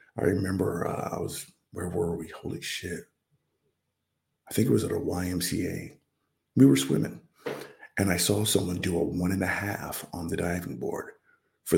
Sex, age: male, 50-69